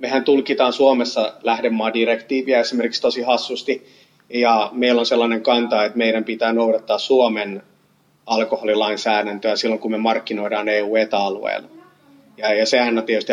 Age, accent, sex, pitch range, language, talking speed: 30-49, native, male, 110-135 Hz, Finnish, 130 wpm